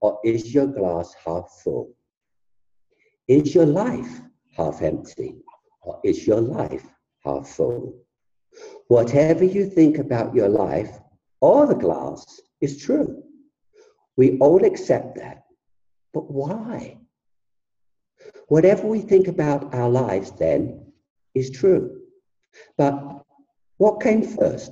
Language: English